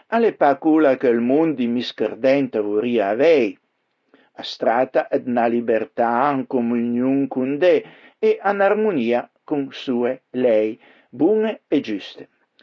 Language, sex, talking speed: Italian, male, 135 wpm